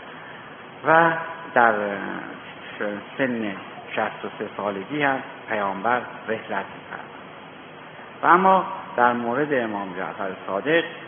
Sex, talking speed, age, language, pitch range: male, 85 wpm, 60-79, Persian, 105-145 Hz